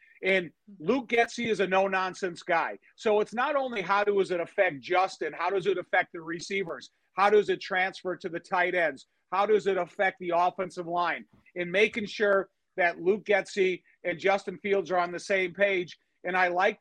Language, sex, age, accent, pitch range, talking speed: English, male, 50-69, American, 175-200 Hz, 195 wpm